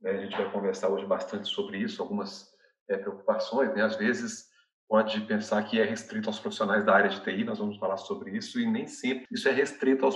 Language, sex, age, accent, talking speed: Portuguese, male, 40-59, Brazilian, 220 wpm